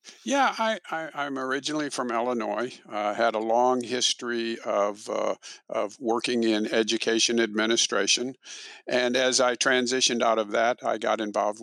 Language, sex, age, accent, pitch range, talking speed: English, male, 50-69, American, 110-130 Hz, 160 wpm